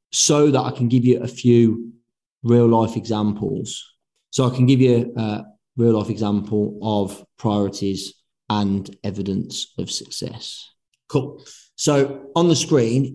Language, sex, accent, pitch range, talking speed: English, male, British, 110-135 Hz, 140 wpm